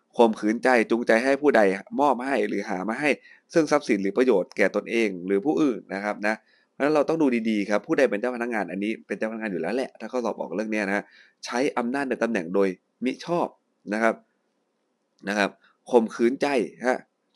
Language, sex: Thai, male